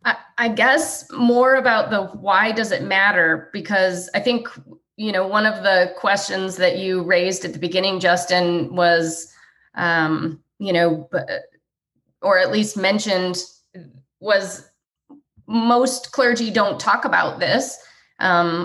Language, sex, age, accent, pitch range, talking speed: English, female, 20-39, American, 170-195 Hz, 130 wpm